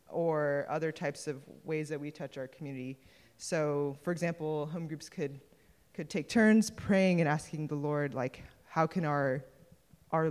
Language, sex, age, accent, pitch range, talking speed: English, female, 20-39, American, 140-160 Hz, 170 wpm